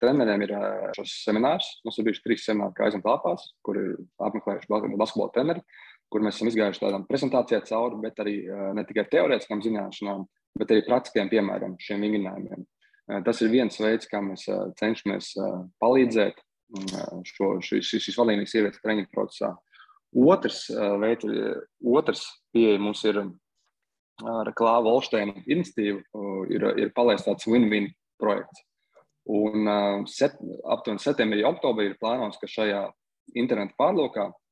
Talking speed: 120 wpm